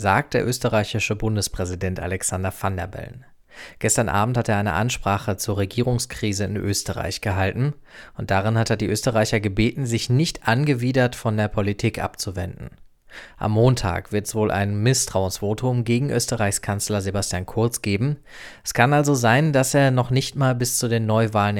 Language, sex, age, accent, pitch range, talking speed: German, male, 20-39, German, 100-120 Hz, 165 wpm